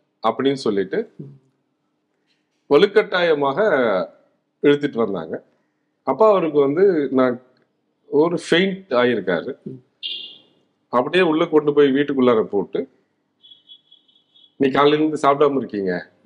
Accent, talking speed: native, 80 wpm